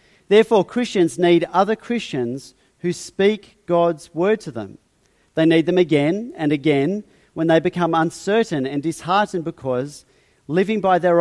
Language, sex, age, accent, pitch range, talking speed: English, male, 40-59, Australian, 150-205 Hz, 145 wpm